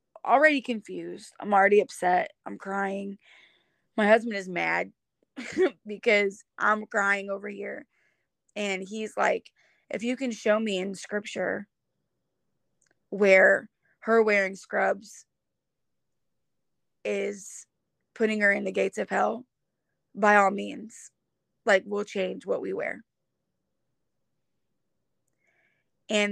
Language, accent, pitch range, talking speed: English, American, 195-220 Hz, 110 wpm